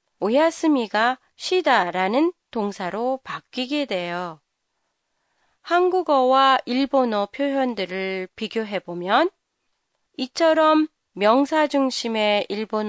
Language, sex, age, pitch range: Japanese, female, 30-49, 200-305 Hz